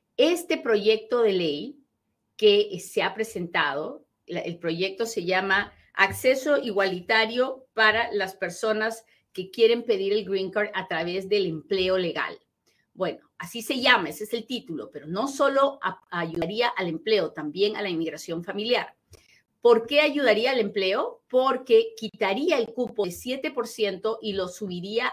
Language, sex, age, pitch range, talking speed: Spanish, female, 40-59, 185-245 Hz, 150 wpm